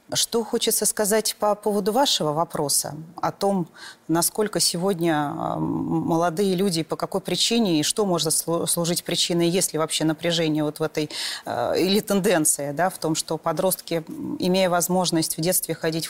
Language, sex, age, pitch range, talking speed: Russian, female, 30-49, 160-195 Hz, 145 wpm